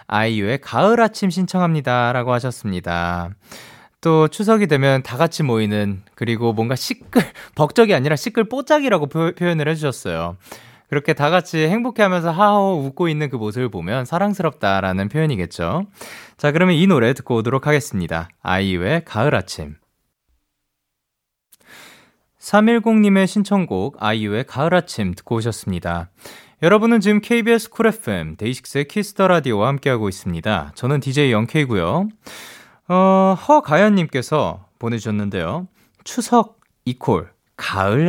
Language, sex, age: Korean, male, 20-39